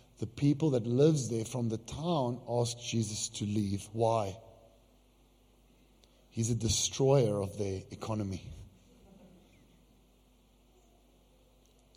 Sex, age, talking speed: male, 50-69, 100 wpm